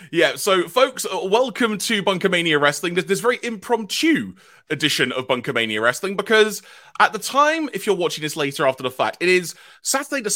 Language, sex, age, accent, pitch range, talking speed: English, male, 30-49, British, 140-210 Hz, 185 wpm